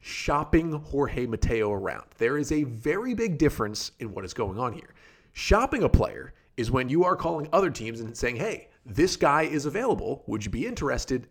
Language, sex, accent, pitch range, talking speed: English, male, American, 110-150 Hz, 195 wpm